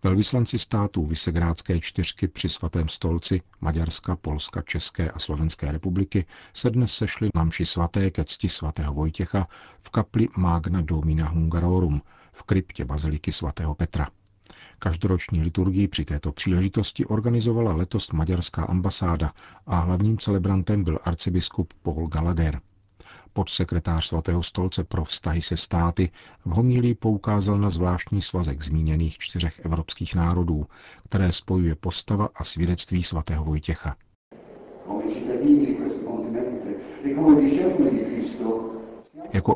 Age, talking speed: 50-69, 110 wpm